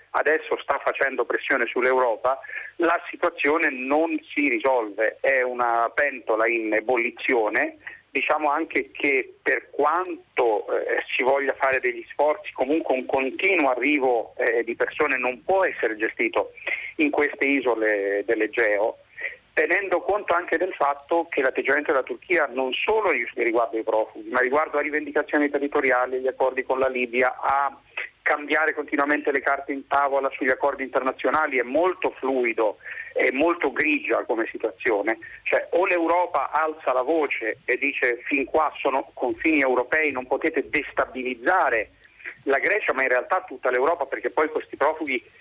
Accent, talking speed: native, 145 wpm